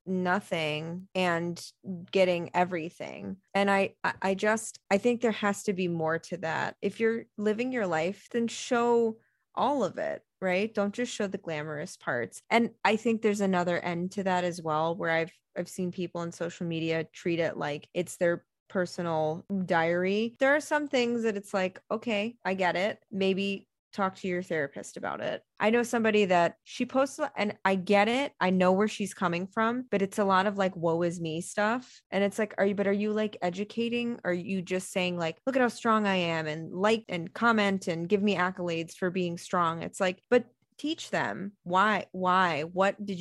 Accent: American